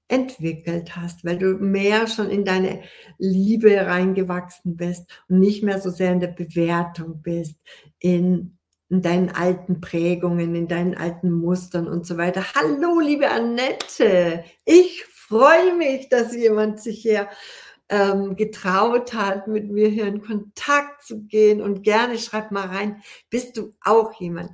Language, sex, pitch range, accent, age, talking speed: German, female, 175-220 Hz, German, 60-79, 150 wpm